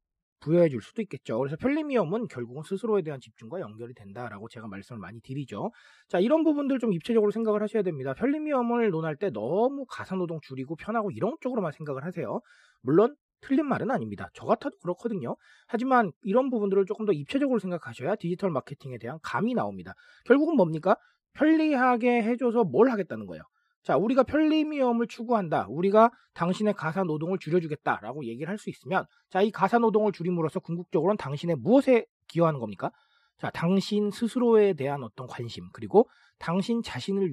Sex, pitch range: male, 140-235 Hz